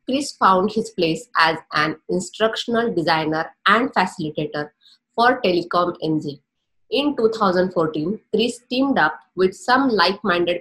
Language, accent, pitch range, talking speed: English, Indian, 165-225 Hz, 120 wpm